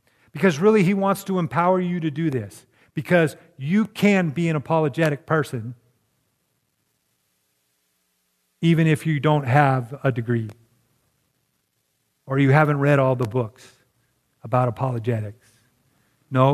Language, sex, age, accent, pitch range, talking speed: English, male, 50-69, American, 125-170 Hz, 125 wpm